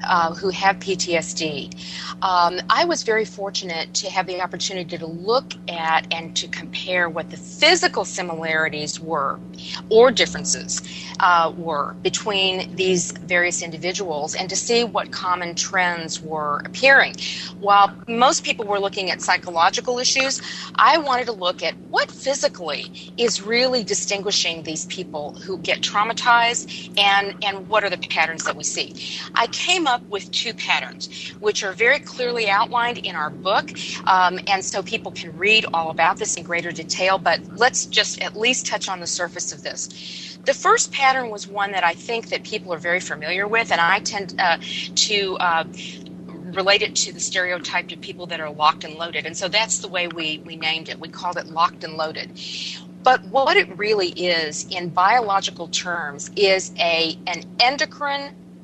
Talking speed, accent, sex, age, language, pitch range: 175 wpm, American, female, 40-59, English, 165-205 Hz